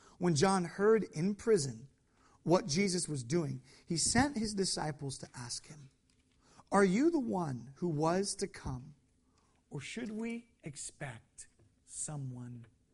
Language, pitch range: English, 150-225 Hz